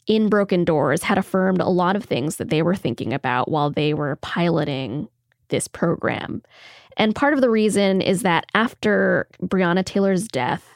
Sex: female